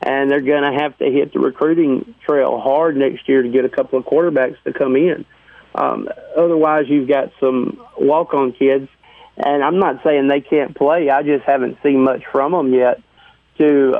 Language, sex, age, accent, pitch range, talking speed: English, male, 40-59, American, 130-155 Hz, 195 wpm